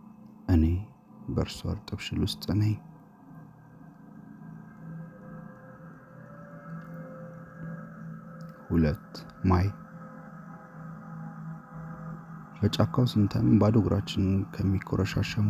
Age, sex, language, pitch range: 30-49, male, Amharic, 100-165 Hz